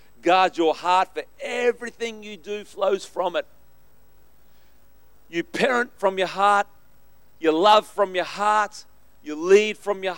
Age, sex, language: 40-59, male, English